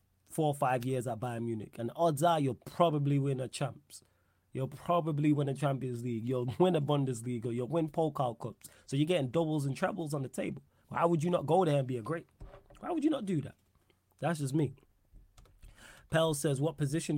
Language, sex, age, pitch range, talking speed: English, male, 20-39, 125-160 Hz, 215 wpm